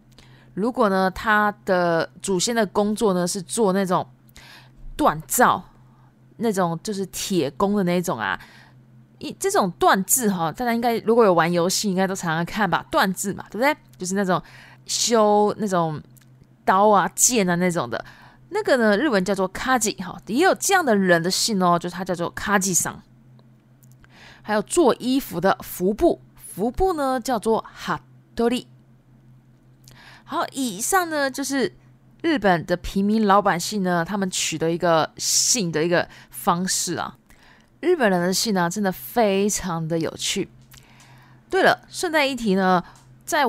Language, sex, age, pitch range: Japanese, female, 20-39, 165-220 Hz